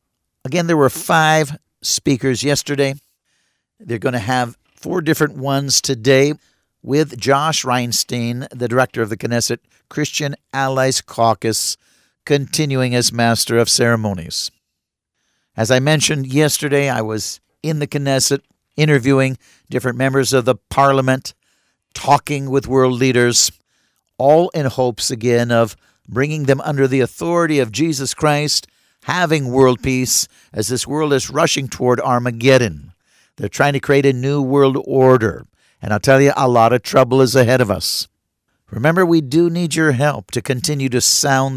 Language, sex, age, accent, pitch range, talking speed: English, male, 50-69, American, 120-145 Hz, 145 wpm